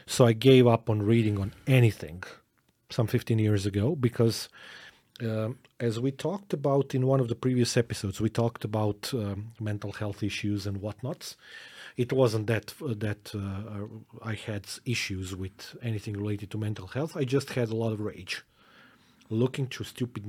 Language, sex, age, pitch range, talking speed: English, male, 30-49, 105-130 Hz, 170 wpm